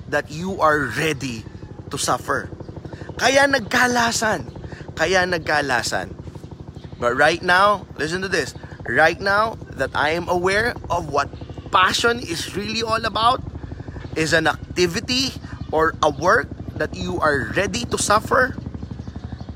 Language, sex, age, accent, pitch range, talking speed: Filipino, male, 20-39, native, 115-180 Hz, 125 wpm